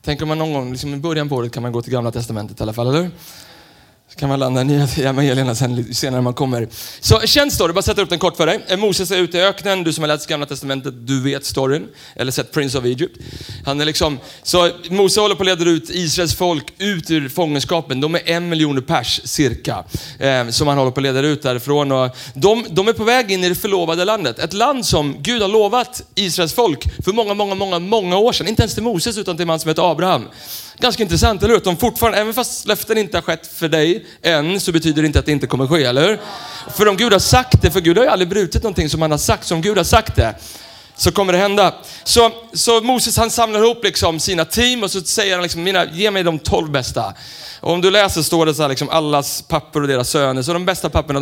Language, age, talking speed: Swedish, 30-49, 255 wpm